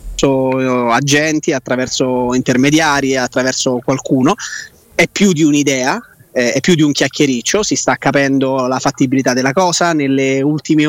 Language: Italian